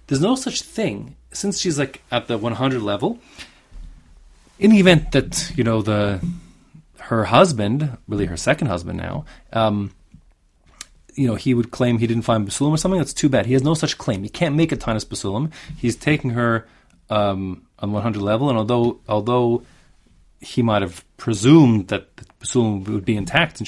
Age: 30-49